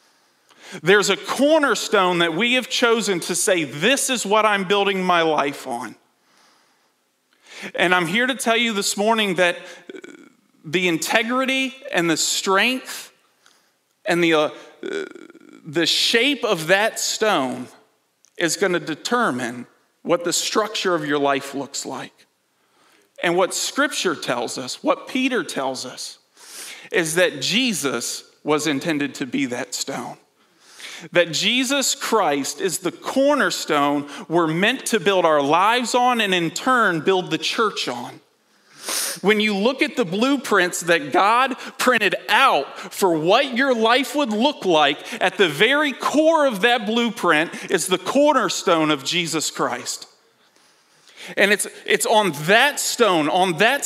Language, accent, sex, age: English, American, male, 40-59